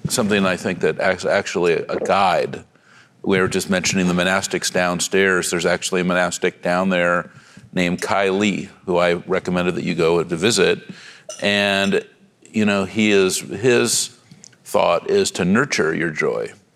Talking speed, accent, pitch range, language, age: 155 wpm, American, 95-120 Hz, English, 50-69